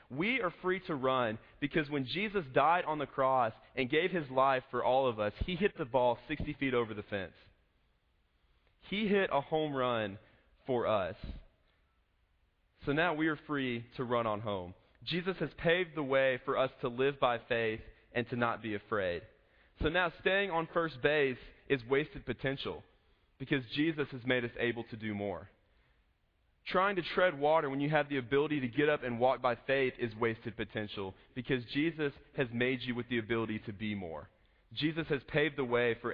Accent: American